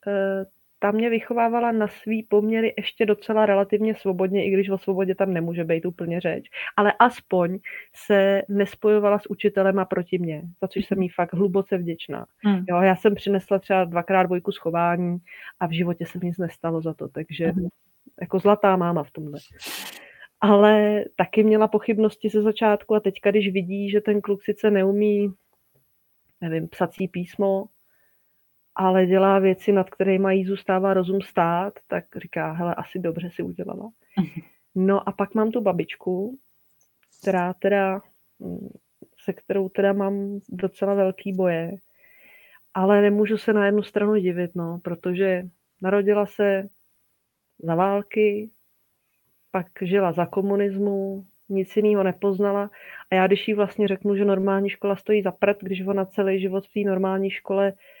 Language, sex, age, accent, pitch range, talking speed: Czech, female, 30-49, native, 185-205 Hz, 155 wpm